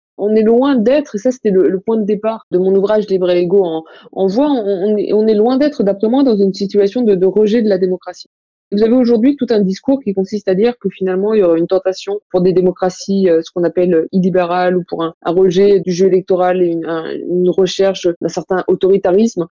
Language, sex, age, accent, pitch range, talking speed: French, female, 20-39, French, 185-220 Hz, 240 wpm